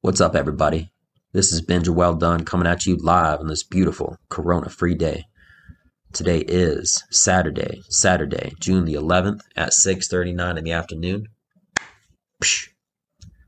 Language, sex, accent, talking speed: English, male, American, 135 wpm